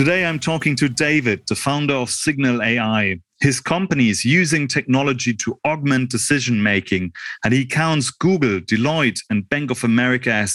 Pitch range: 115-145 Hz